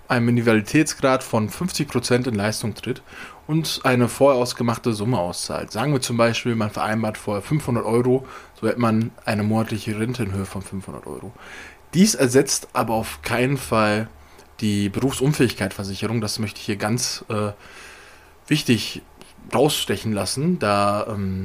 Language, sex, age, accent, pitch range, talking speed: German, male, 20-39, German, 105-125 Hz, 145 wpm